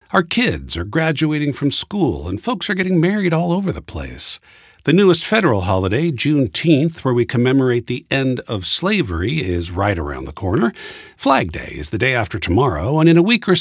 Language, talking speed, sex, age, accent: English, 195 wpm, male, 50-69, American